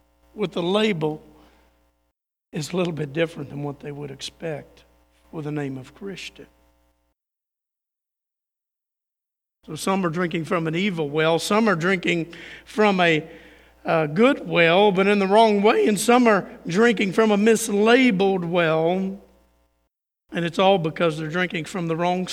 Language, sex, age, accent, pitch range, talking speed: English, male, 50-69, American, 155-220 Hz, 150 wpm